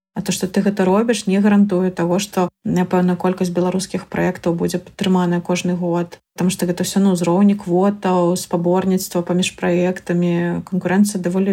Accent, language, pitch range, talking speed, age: native, Russian, 180-200 Hz, 160 wpm, 30-49